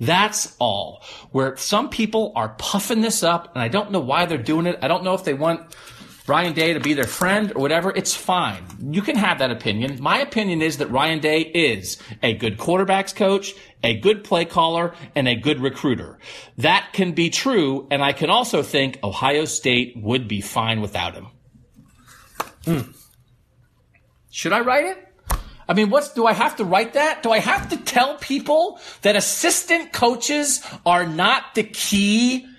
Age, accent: 40-59, American